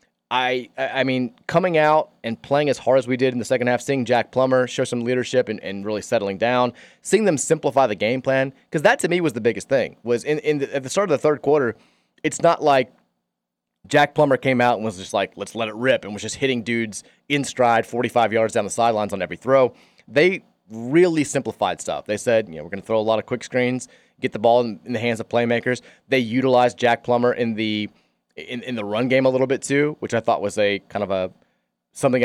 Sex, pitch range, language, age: male, 110-145 Hz, English, 30-49